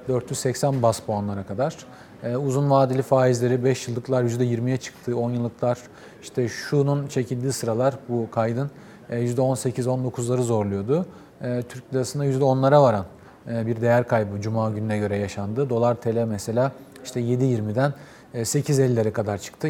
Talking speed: 120 wpm